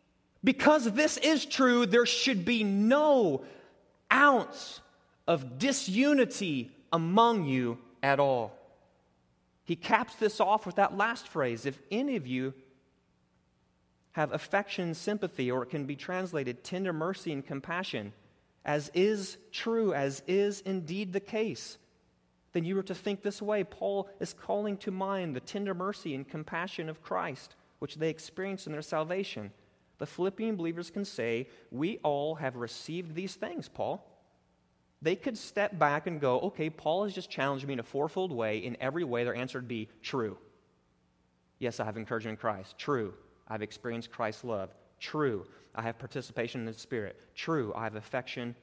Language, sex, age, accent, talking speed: English, male, 30-49, American, 160 wpm